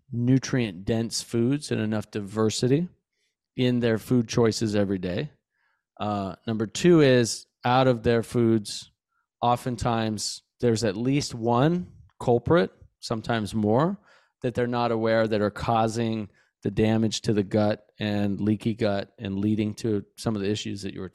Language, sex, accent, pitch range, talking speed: English, male, American, 105-125 Hz, 150 wpm